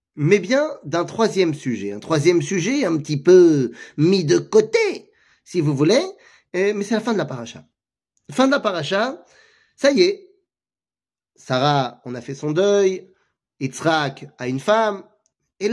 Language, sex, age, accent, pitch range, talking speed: French, male, 30-49, French, 155-225 Hz, 160 wpm